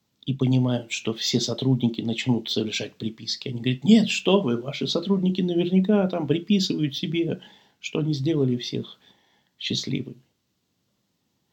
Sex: male